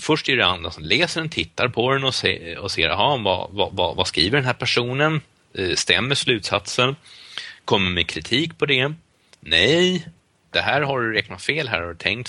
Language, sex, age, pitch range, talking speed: Swedish, male, 30-49, 85-125 Hz, 180 wpm